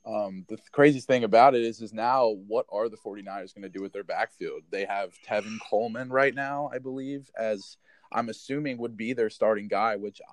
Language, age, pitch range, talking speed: English, 20-39, 100-125 Hz, 215 wpm